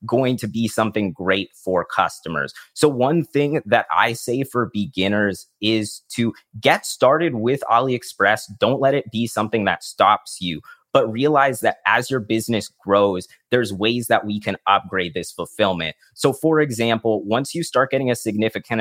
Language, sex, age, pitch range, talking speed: English, male, 30-49, 105-130 Hz, 170 wpm